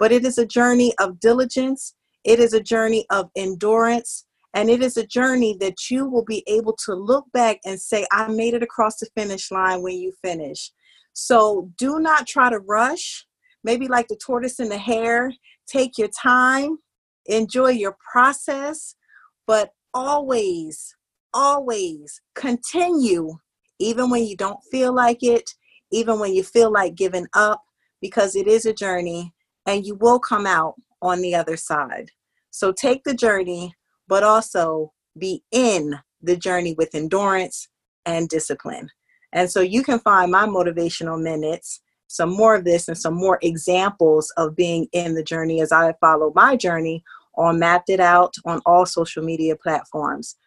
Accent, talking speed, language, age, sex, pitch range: American, 165 wpm, English, 40-59, female, 175-245 Hz